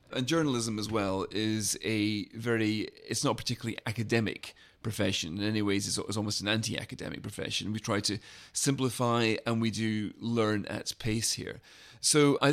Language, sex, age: English, male, 30-49